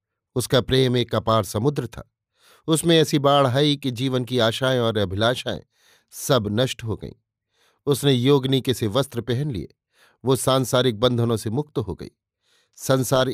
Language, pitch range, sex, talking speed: Hindi, 110-130 Hz, male, 155 wpm